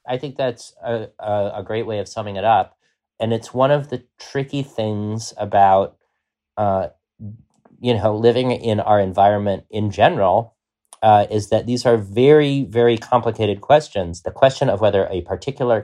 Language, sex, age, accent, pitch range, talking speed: English, male, 30-49, American, 95-125 Hz, 165 wpm